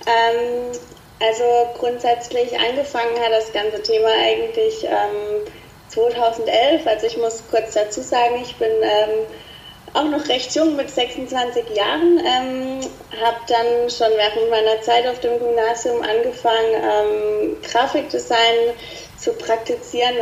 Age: 30-49